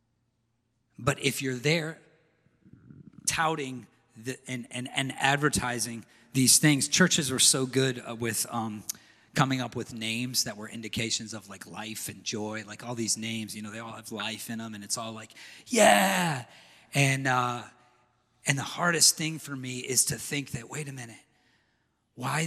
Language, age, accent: English, 40-59, American